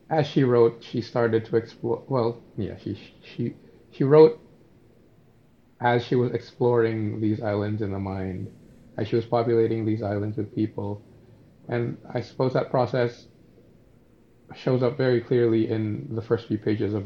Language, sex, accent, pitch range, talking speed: English, male, American, 110-125 Hz, 160 wpm